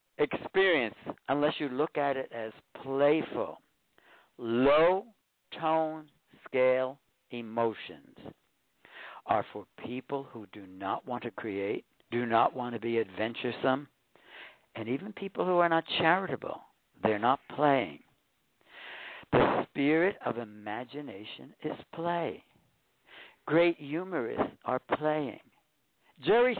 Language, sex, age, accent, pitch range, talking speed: English, male, 60-79, American, 125-175 Hz, 105 wpm